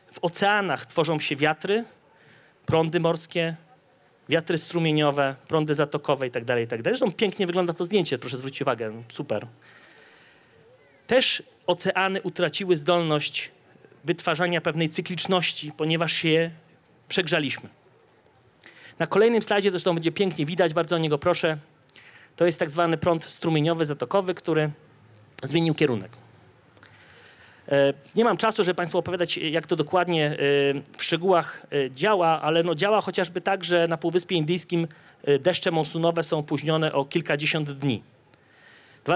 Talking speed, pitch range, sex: 130 wpm, 145-175 Hz, male